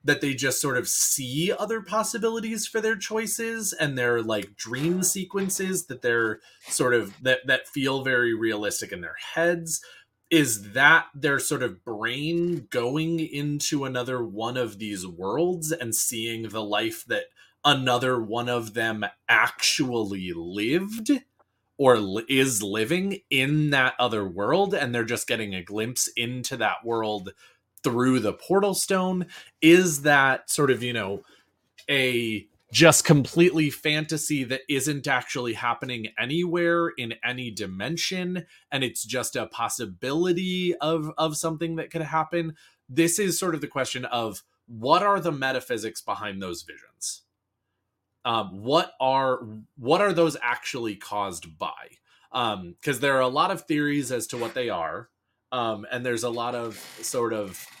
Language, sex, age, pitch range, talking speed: English, male, 20-39, 115-165 Hz, 150 wpm